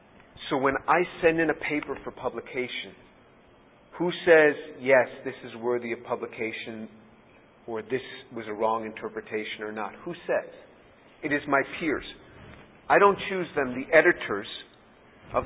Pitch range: 120-150 Hz